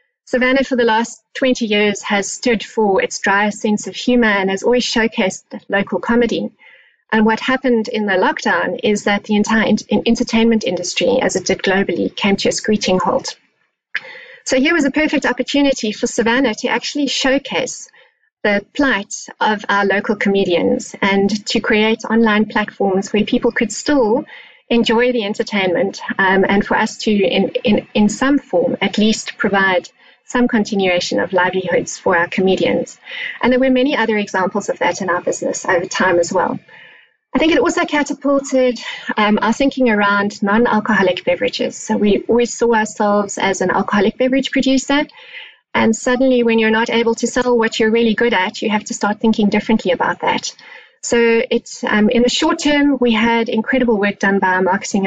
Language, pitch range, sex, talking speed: English, 205-250 Hz, female, 180 wpm